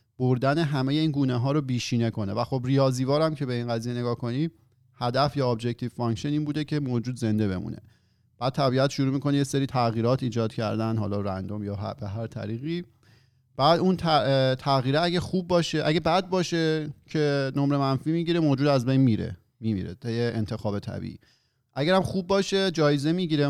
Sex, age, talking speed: male, 30-49, 180 wpm